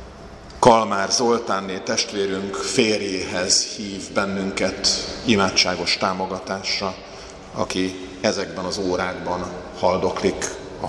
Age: 50-69